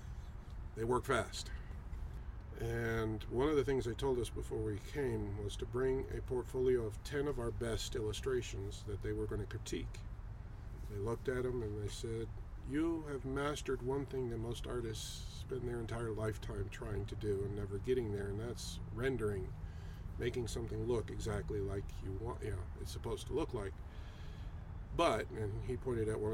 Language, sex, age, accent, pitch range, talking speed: English, male, 50-69, American, 95-120 Hz, 180 wpm